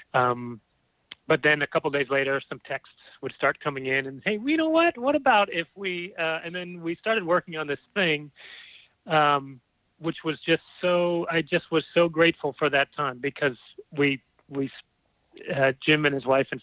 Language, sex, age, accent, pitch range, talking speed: English, male, 30-49, American, 130-155 Hz, 200 wpm